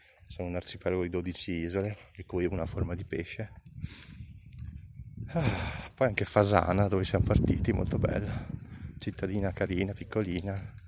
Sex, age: male, 20-39